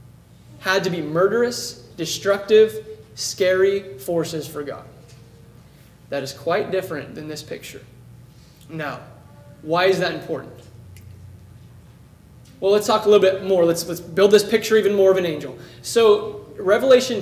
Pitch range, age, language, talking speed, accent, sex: 155-225 Hz, 20-39, English, 140 wpm, American, male